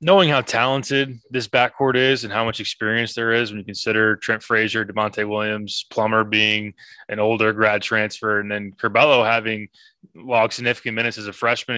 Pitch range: 105-120 Hz